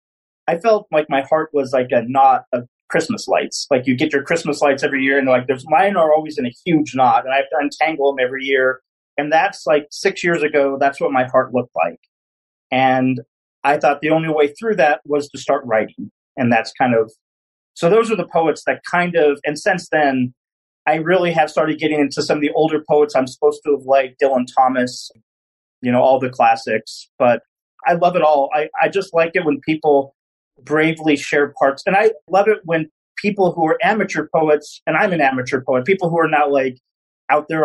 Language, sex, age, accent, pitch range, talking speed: English, male, 30-49, American, 135-165 Hz, 220 wpm